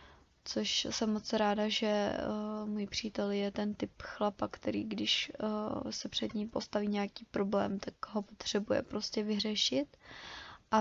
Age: 20-39